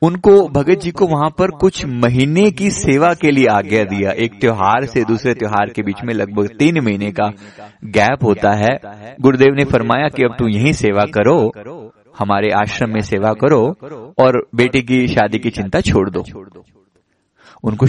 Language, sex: Hindi, male